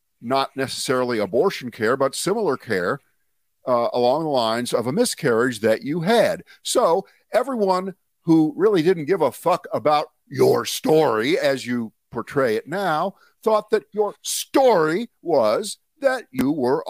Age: 50-69